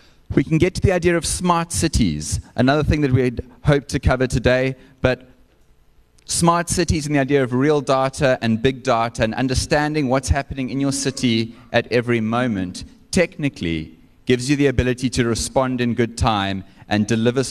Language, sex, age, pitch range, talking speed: English, male, 30-49, 110-135 Hz, 175 wpm